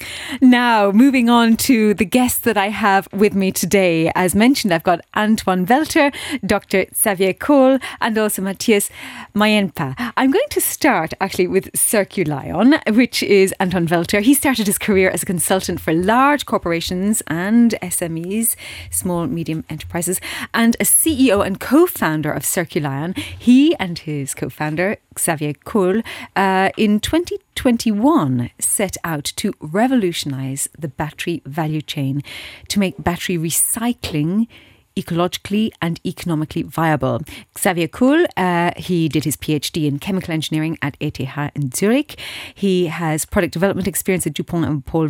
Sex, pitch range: female, 165-215 Hz